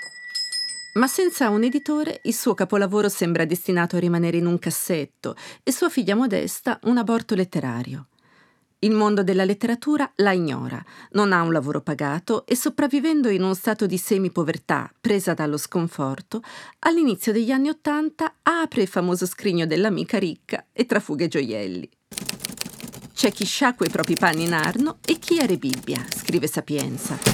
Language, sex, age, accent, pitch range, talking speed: Italian, female, 40-59, native, 170-255 Hz, 160 wpm